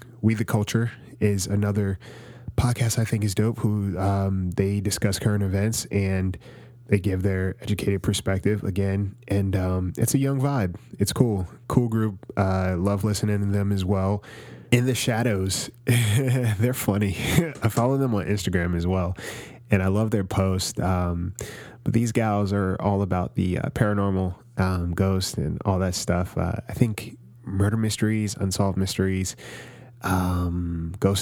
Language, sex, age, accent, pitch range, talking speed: English, male, 10-29, American, 95-115 Hz, 155 wpm